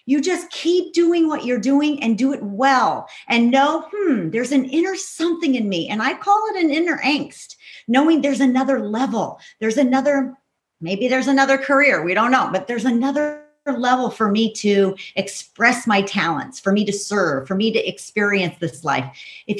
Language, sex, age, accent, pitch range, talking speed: English, female, 50-69, American, 215-280 Hz, 185 wpm